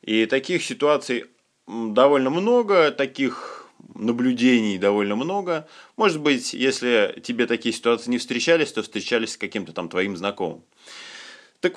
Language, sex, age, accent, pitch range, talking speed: Russian, male, 20-39, native, 105-165 Hz, 125 wpm